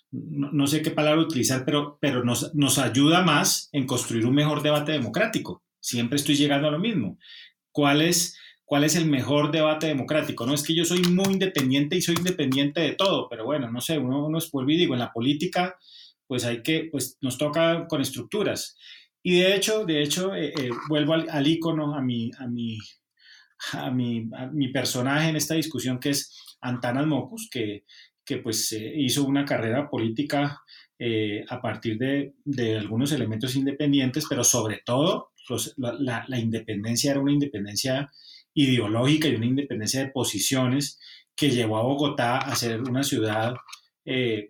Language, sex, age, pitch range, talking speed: Spanish, male, 30-49, 120-150 Hz, 175 wpm